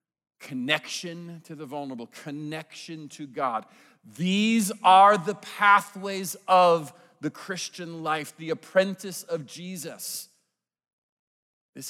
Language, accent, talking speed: English, American, 100 wpm